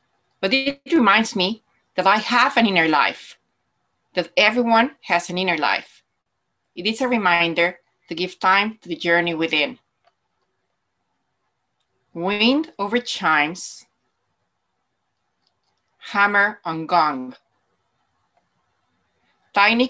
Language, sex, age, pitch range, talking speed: English, female, 30-49, 175-230 Hz, 105 wpm